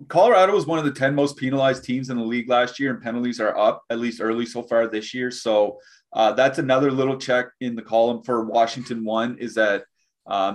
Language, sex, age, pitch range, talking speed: English, male, 30-49, 120-150 Hz, 230 wpm